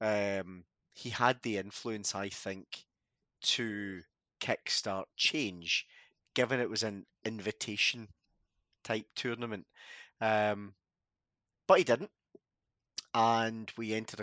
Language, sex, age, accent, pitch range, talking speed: English, male, 30-49, British, 100-125 Hz, 100 wpm